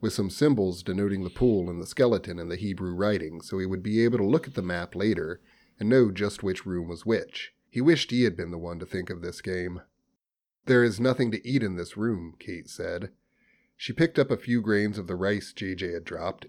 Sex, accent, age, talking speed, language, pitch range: male, American, 30-49, 235 wpm, English, 90-120 Hz